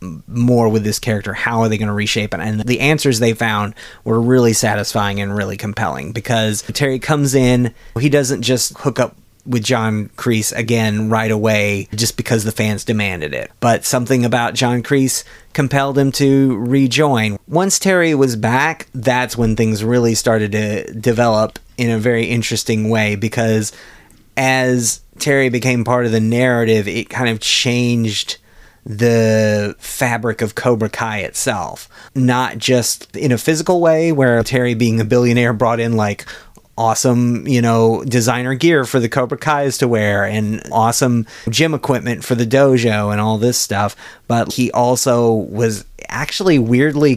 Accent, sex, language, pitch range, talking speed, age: American, male, English, 110-130 Hz, 165 wpm, 30-49